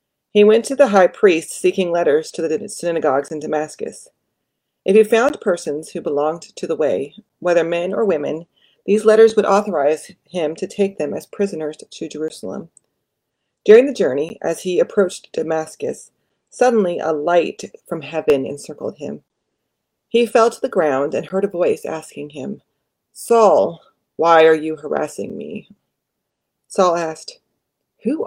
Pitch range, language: 155-215 Hz, English